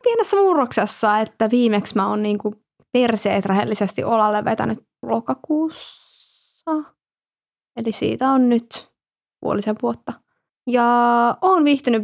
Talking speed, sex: 105 wpm, female